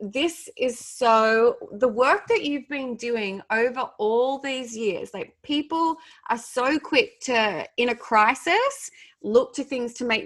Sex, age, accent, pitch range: female, 20-39, Australian, 200-260 Hz